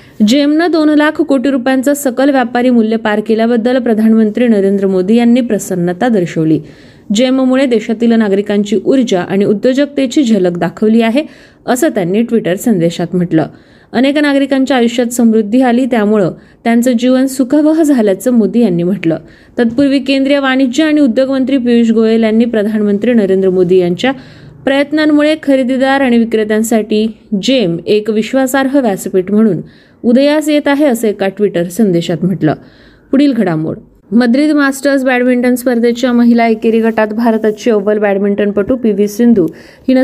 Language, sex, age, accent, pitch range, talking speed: Marathi, female, 20-39, native, 205-260 Hz, 130 wpm